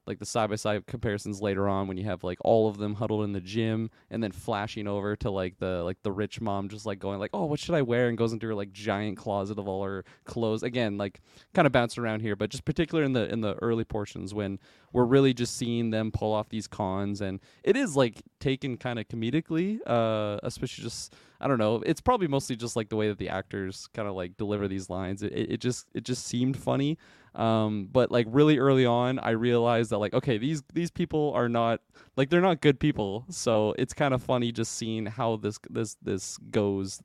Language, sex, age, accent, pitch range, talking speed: English, male, 20-39, American, 105-130 Hz, 235 wpm